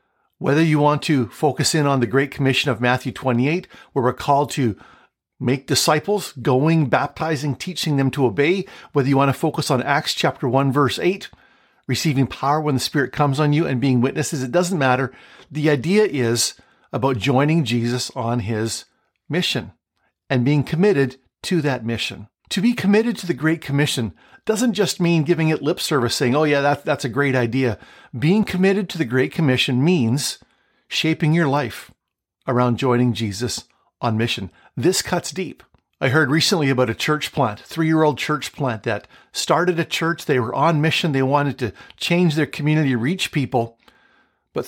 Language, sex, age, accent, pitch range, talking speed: English, male, 50-69, American, 130-165 Hz, 175 wpm